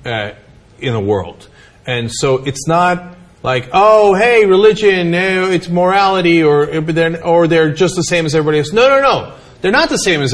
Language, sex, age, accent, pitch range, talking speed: English, male, 40-59, American, 165-255 Hz, 185 wpm